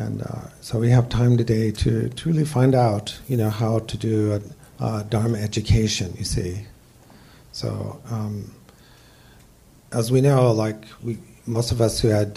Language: English